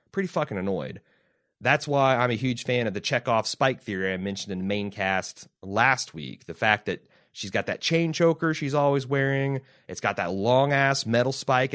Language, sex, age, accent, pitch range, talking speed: English, male, 30-49, American, 100-140 Hz, 200 wpm